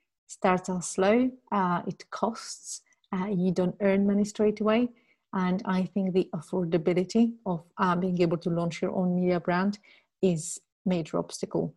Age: 30-49